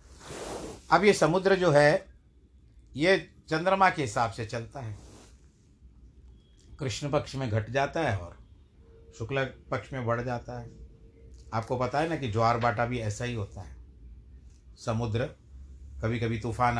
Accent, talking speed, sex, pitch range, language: native, 145 wpm, male, 80-120 Hz, Hindi